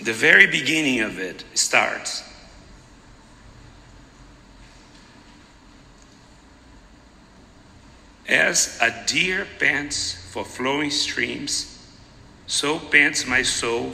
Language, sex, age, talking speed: English, male, 60-79, 75 wpm